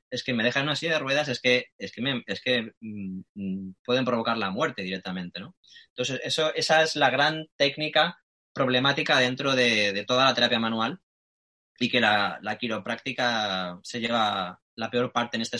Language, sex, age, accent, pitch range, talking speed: Spanish, male, 20-39, Spanish, 120-140 Hz, 190 wpm